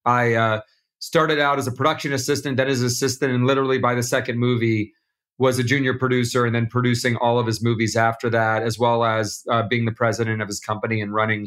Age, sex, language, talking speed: 40-59, male, English, 225 wpm